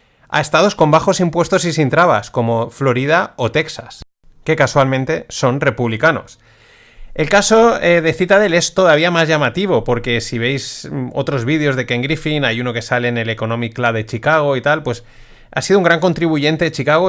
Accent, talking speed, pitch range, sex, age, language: Spanish, 185 wpm, 125-165 Hz, male, 30-49, Spanish